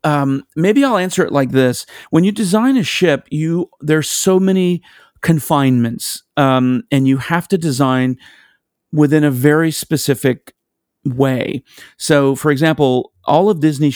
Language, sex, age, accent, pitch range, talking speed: English, male, 40-59, American, 125-160 Hz, 145 wpm